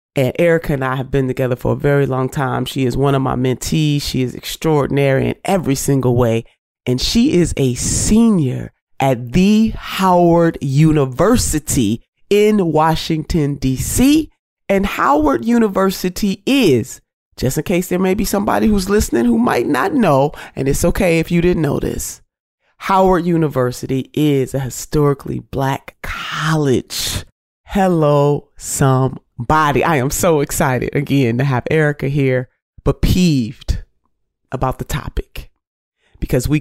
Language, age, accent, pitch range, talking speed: English, 30-49, American, 130-170 Hz, 145 wpm